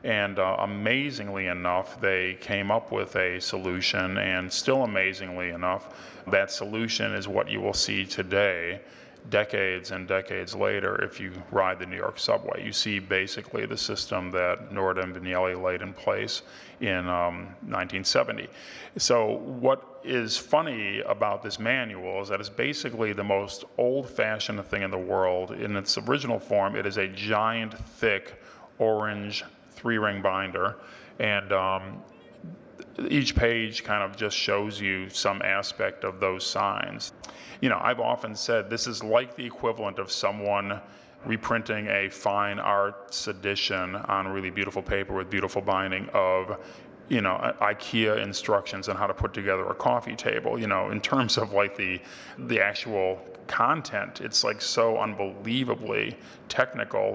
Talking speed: 150 wpm